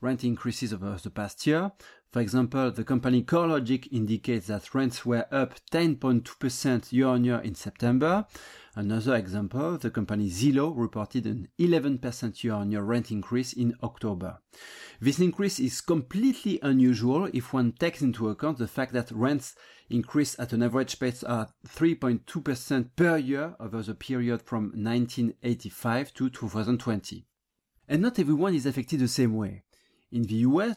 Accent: French